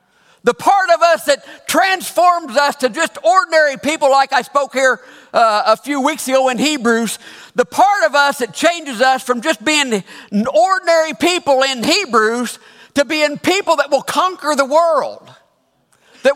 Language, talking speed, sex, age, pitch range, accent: English, 165 wpm, male, 50-69, 235-320 Hz, American